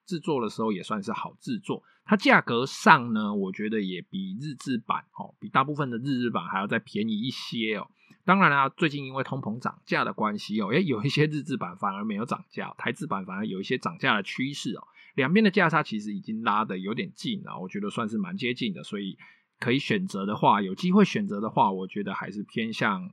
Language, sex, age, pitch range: Chinese, male, 20-39, 130-205 Hz